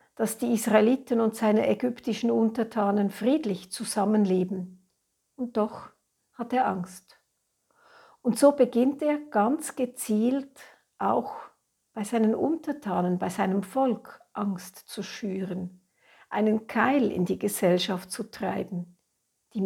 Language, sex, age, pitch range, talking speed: German, female, 60-79, 195-245 Hz, 115 wpm